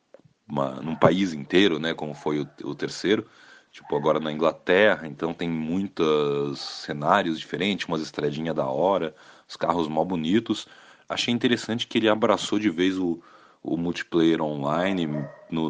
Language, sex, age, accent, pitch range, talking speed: Portuguese, male, 30-49, Brazilian, 75-95 Hz, 150 wpm